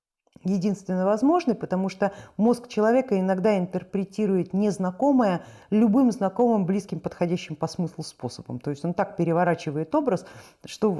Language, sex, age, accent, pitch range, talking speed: Russian, female, 50-69, native, 165-220 Hz, 125 wpm